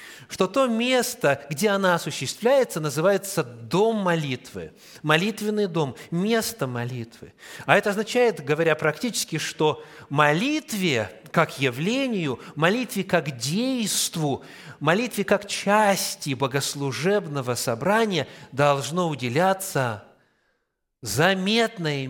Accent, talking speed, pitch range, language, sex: native, 90 wpm, 145-210 Hz, Russian, male